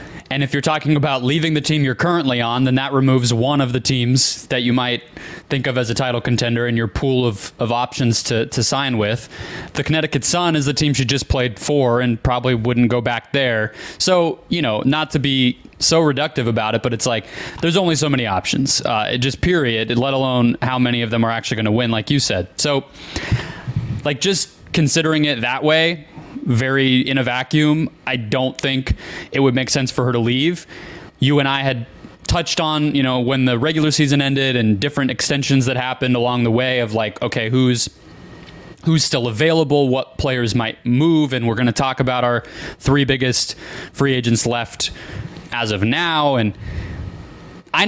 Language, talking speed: English, 200 wpm